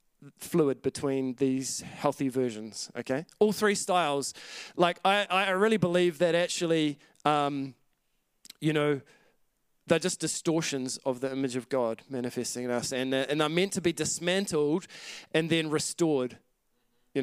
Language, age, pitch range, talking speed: English, 20-39, 135-170 Hz, 145 wpm